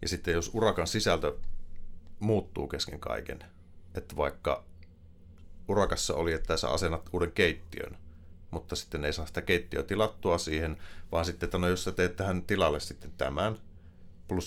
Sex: male